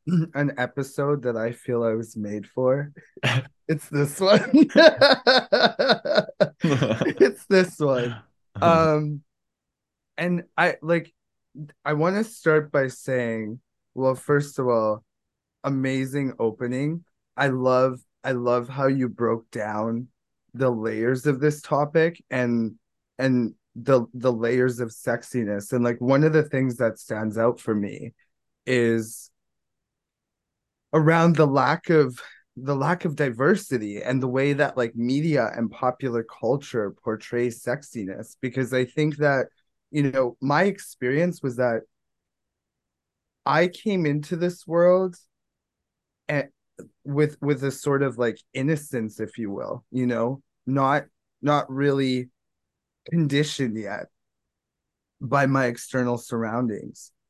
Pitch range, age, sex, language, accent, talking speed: 120-150 Hz, 20-39, male, English, American, 125 wpm